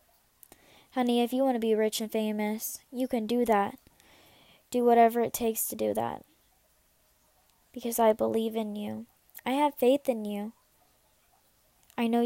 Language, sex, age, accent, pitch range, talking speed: English, female, 10-29, American, 210-235 Hz, 155 wpm